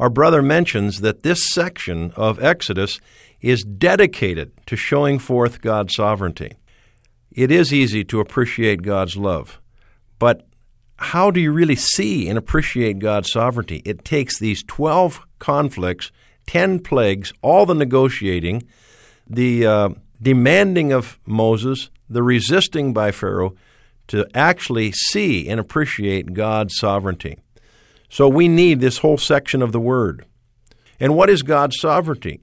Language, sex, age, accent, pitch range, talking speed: English, male, 50-69, American, 110-155 Hz, 135 wpm